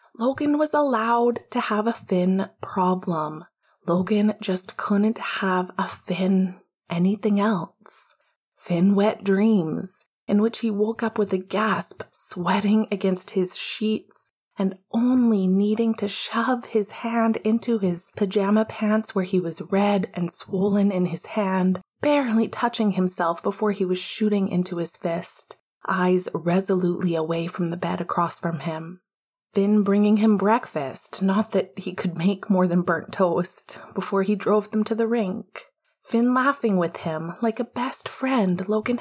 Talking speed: 150 wpm